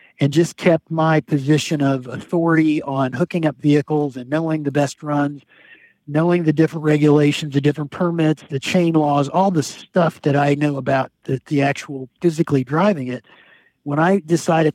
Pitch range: 145-170 Hz